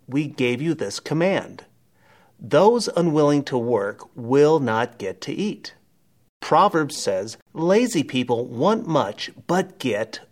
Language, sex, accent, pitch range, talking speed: English, male, American, 130-205 Hz, 130 wpm